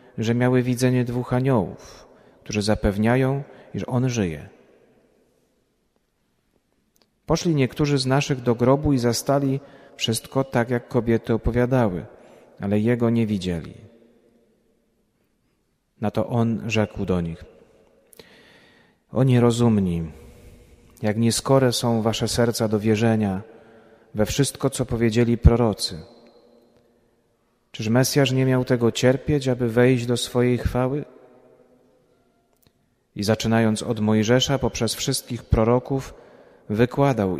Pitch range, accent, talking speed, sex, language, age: 110-130 Hz, native, 105 wpm, male, Polish, 40-59